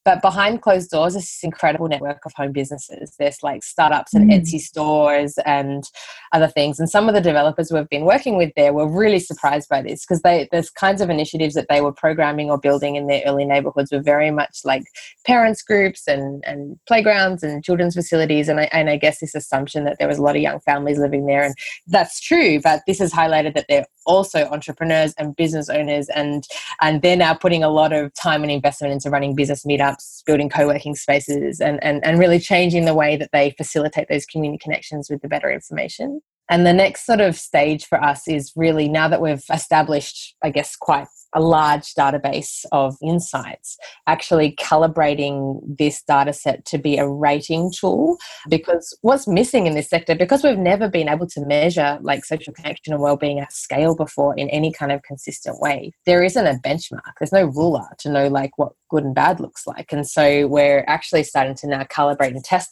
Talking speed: 205 wpm